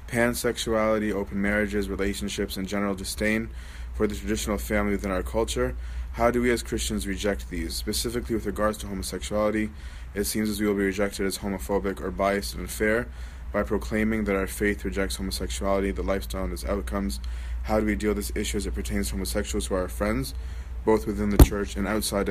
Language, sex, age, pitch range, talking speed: English, male, 20-39, 70-105 Hz, 195 wpm